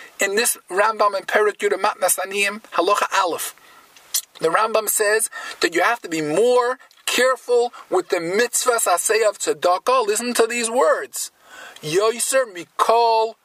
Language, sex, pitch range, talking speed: English, male, 225-340 Hz, 140 wpm